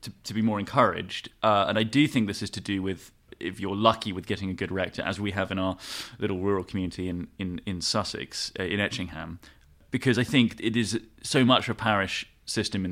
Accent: British